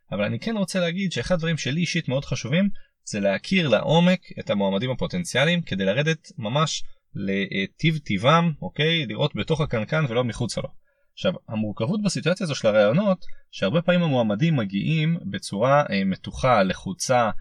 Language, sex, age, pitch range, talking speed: Hebrew, male, 20-39, 115-180 Hz, 145 wpm